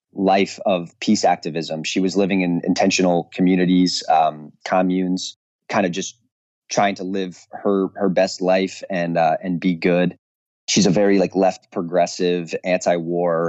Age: 20-39